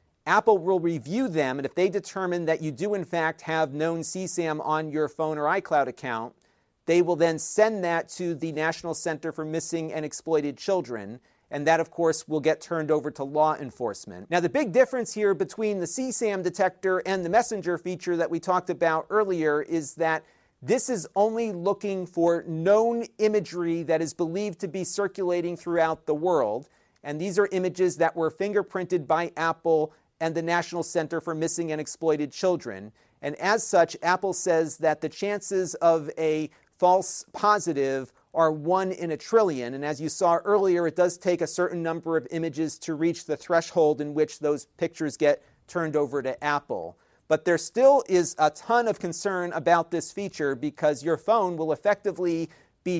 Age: 40-59